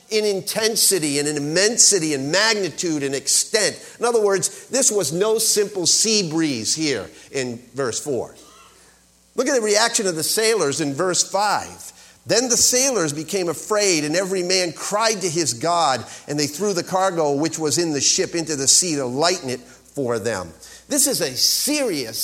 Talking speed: 180 wpm